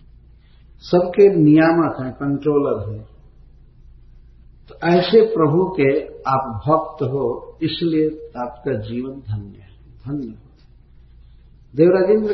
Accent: native